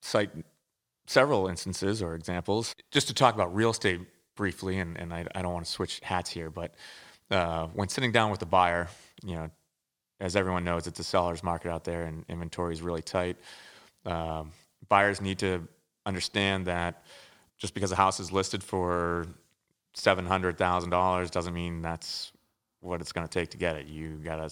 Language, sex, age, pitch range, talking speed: English, male, 30-49, 85-100 Hz, 185 wpm